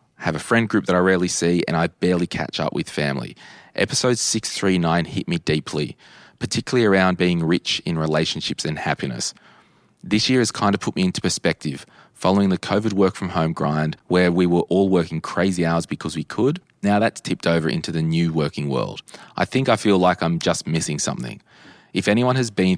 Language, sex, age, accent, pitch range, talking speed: English, male, 20-39, Australian, 80-95 Hz, 200 wpm